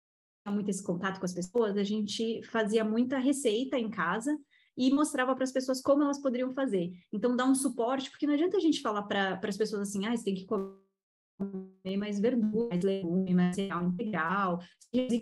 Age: 20-39